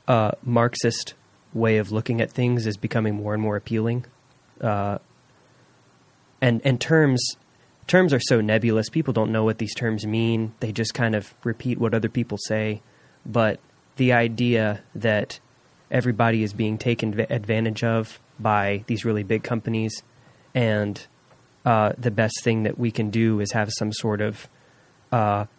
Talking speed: 160 wpm